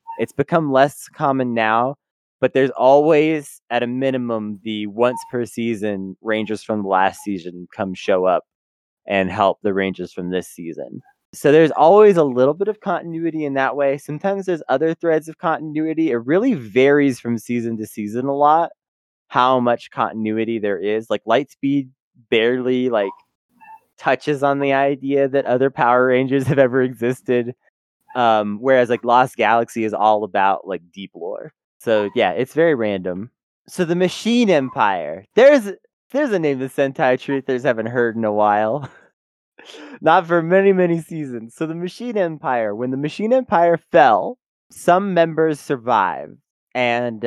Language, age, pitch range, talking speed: English, 20-39, 110-155 Hz, 160 wpm